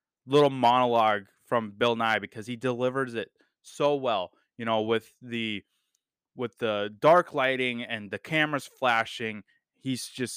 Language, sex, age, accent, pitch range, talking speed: English, male, 20-39, American, 110-130 Hz, 145 wpm